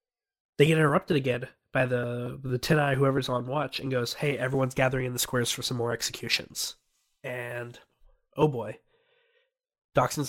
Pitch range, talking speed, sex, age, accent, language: 125-165 Hz, 155 wpm, male, 20-39, American, English